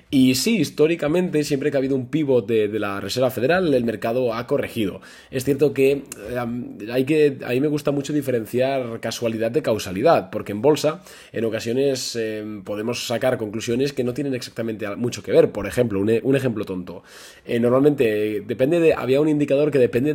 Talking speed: 195 wpm